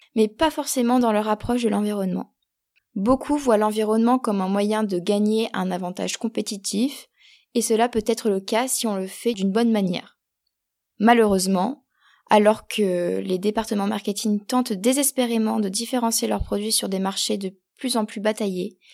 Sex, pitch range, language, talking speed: female, 205-250 Hz, French, 165 wpm